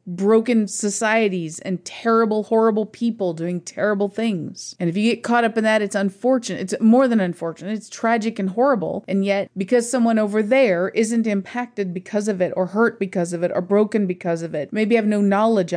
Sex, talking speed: female, 200 wpm